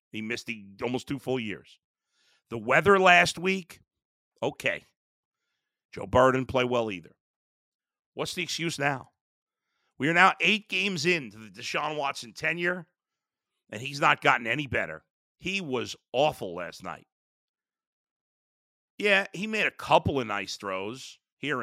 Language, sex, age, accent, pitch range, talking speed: English, male, 50-69, American, 150-200 Hz, 140 wpm